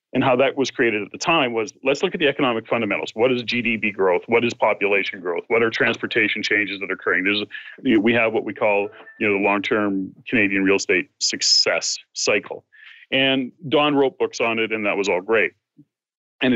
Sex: male